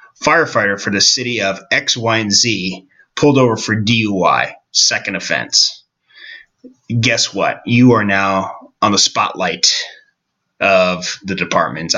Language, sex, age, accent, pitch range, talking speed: English, male, 30-49, American, 95-125 Hz, 125 wpm